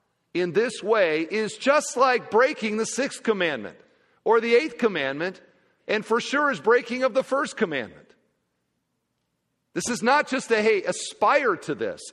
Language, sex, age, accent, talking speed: English, male, 50-69, American, 160 wpm